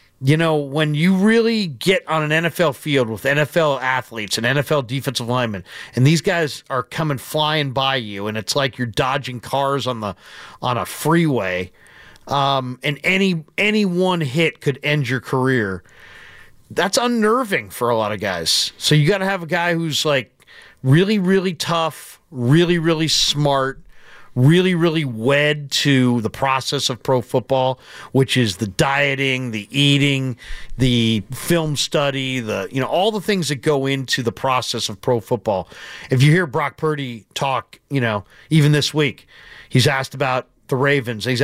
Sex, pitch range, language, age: male, 130-160 Hz, English, 40-59